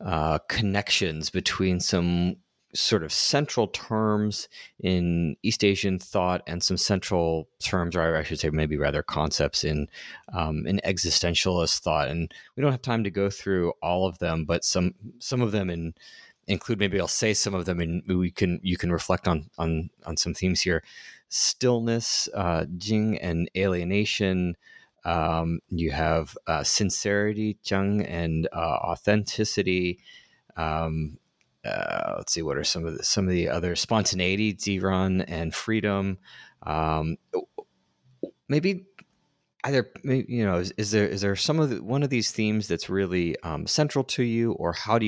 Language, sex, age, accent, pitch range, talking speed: English, male, 30-49, American, 85-105 Hz, 160 wpm